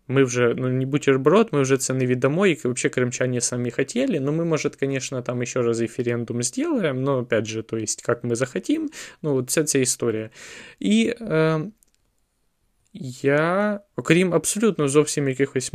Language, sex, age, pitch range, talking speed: Ukrainian, male, 20-39, 120-165 Hz, 165 wpm